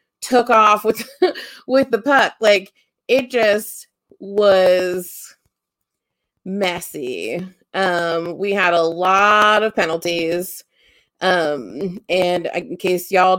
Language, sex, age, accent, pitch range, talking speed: English, female, 30-49, American, 180-220 Hz, 105 wpm